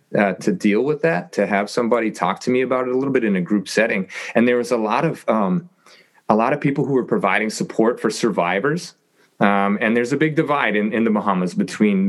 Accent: American